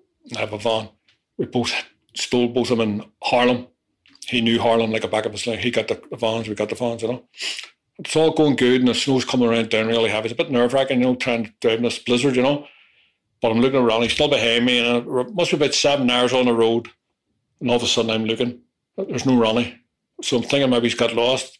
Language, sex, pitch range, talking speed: English, male, 115-125 Hz, 255 wpm